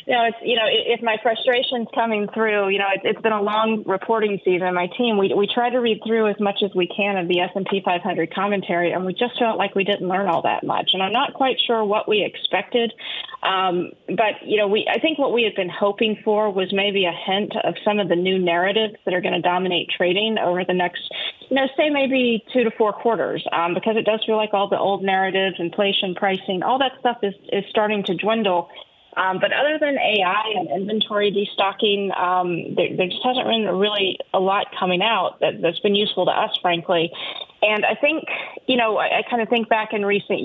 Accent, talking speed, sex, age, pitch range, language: American, 235 wpm, female, 30-49, 185-220 Hz, English